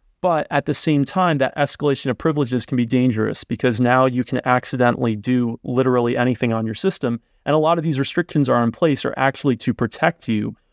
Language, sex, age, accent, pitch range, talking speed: English, male, 30-49, American, 115-140 Hz, 205 wpm